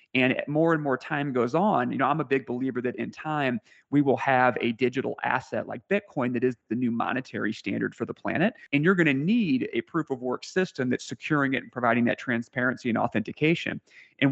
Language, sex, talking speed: English, male, 220 wpm